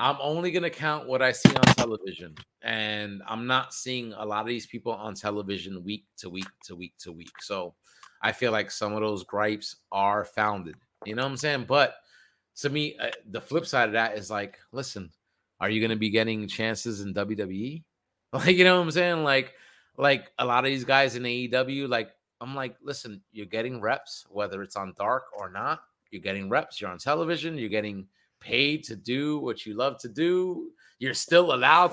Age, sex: 30-49, male